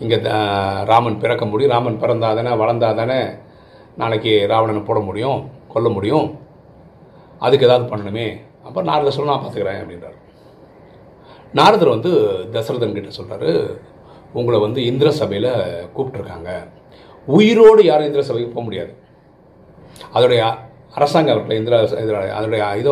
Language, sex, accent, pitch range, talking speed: Tamil, male, native, 110-185 Hz, 115 wpm